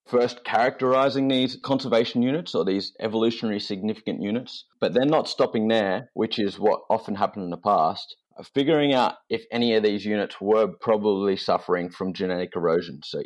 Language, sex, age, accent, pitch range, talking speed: English, male, 30-49, Australian, 90-120 Hz, 170 wpm